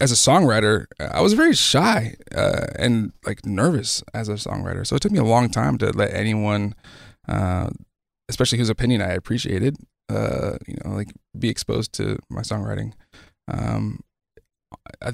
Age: 20-39